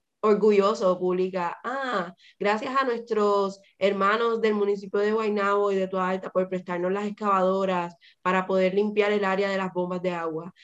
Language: Spanish